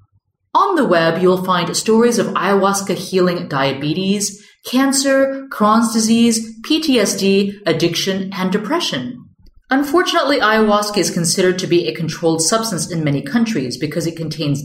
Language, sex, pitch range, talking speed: English, female, 165-235 Hz, 130 wpm